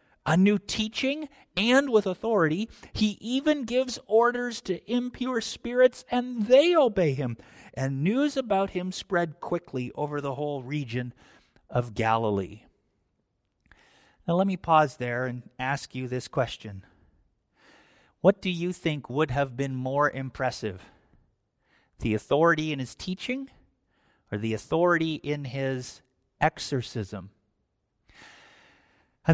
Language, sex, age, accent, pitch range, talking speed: English, male, 50-69, American, 130-180 Hz, 125 wpm